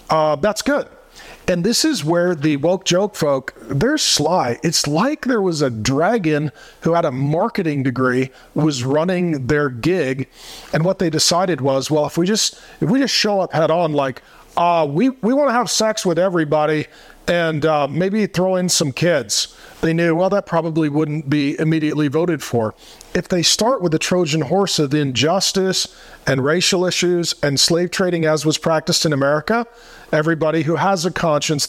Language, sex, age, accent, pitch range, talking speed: English, male, 40-59, American, 150-180 Hz, 180 wpm